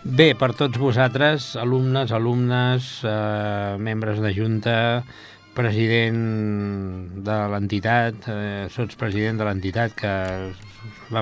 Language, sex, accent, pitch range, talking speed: Italian, male, Spanish, 105-130 Hz, 105 wpm